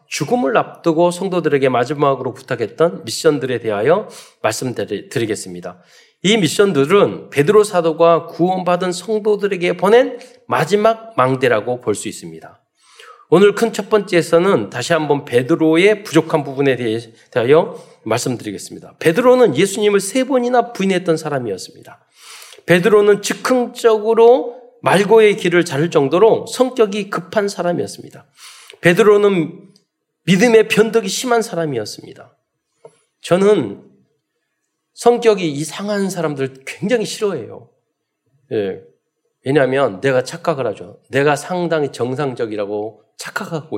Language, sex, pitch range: Korean, male, 150-225 Hz